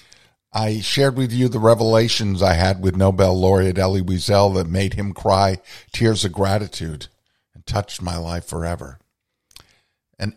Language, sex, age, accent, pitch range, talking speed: English, male, 50-69, American, 95-115 Hz, 150 wpm